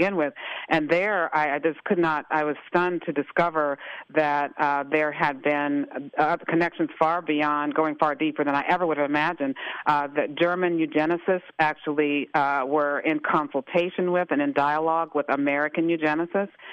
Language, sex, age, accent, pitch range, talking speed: English, female, 50-69, American, 145-165 Hz, 170 wpm